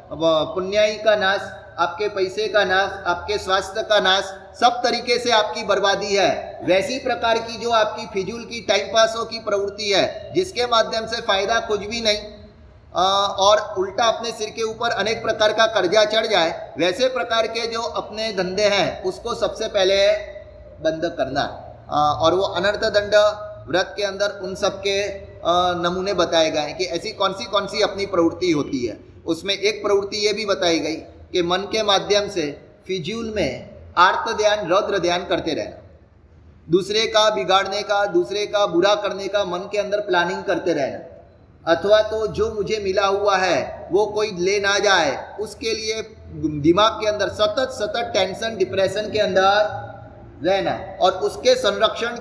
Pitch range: 190-220 Hz